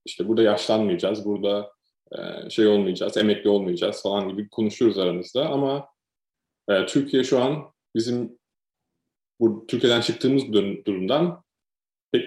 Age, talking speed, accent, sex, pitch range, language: 30-49, 110 wpm, native, male, 105-120 Hz, Turkish